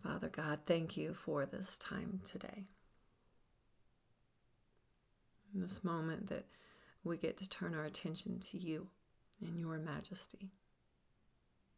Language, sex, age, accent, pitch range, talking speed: English, female, 40-59, American, 160-195 Hz, 115 wpm